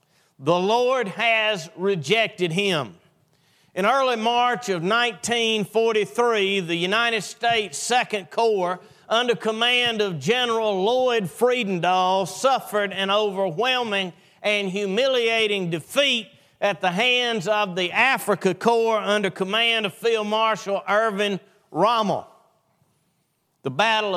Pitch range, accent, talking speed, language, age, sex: 190-230 Hz, American, 105 wpm, English, 40-59, male